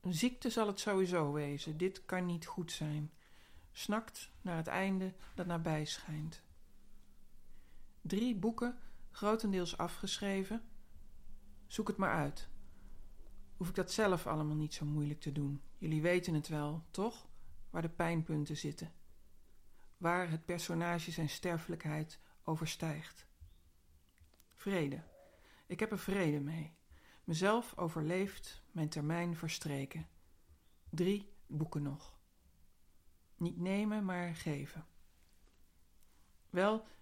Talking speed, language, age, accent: 115 wpm, Dutch, 40-59, Dutch